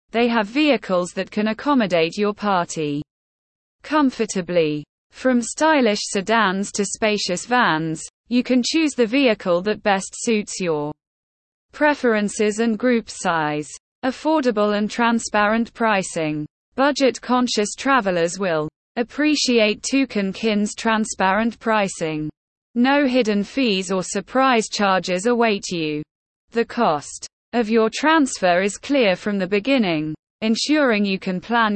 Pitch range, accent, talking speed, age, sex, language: 185-245 Hz, British, 115 wpm, 20-39, female, English